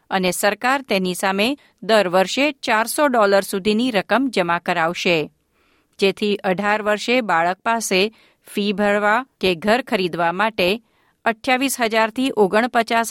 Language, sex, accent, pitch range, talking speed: Gujarati, female, native, 190-245 Hz, 105 wpm